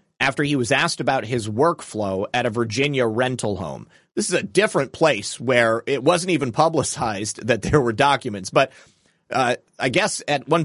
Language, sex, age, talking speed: English, male, 30-49, 180 wpm